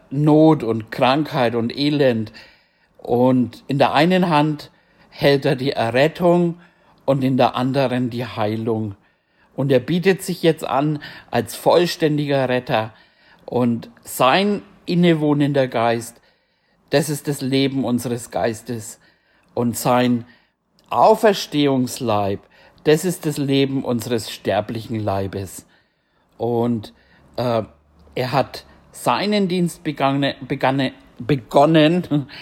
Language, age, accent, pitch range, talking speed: German, 60-79, German, 120-155 Hz, 105 wpm